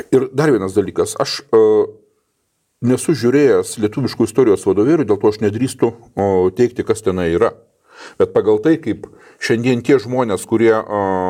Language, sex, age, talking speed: English, male, 40-59, 145 wpm